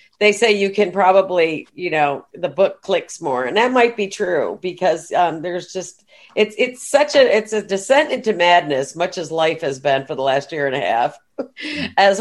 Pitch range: 175-220 Hz